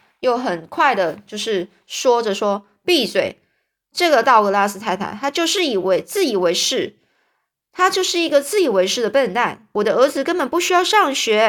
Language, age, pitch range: Chinese, 20-39, 215-300 Hz